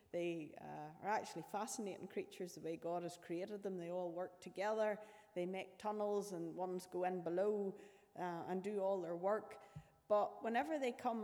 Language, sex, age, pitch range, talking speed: English, female, 30-49, 180-230 Hz, 180 wpm